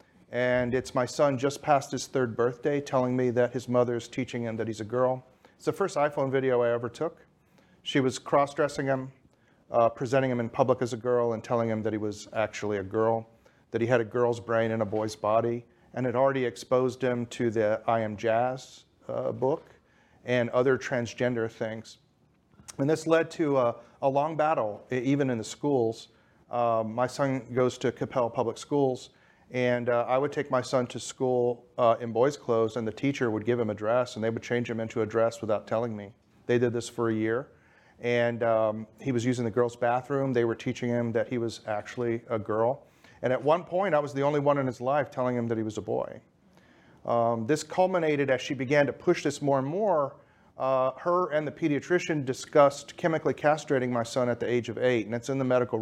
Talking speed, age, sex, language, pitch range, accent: 220 wpm, 40-59, male, English, 115-135 Hz, American